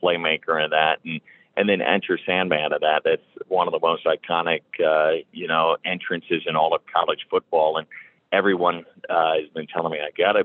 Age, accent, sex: 40-59, American, male